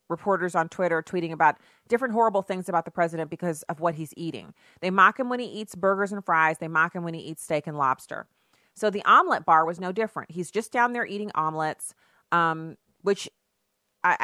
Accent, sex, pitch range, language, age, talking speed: American, female, 150-185 Hz, English, 30-49, 210 wpm